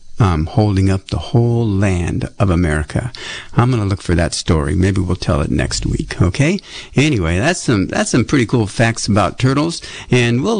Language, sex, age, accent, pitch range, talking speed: English, male, 60-79, American, 100-140 Hz, 195 wpm